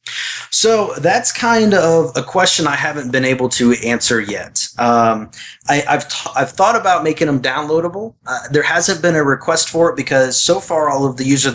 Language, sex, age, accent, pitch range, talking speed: English, male, 30-49, American, 120-150 Hz, 195 wpm